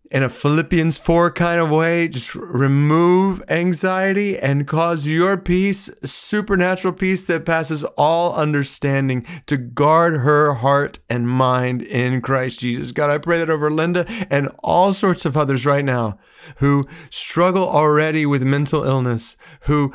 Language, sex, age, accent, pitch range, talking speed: English, male, 30-49, American, 140-175 Hz, 145 wpm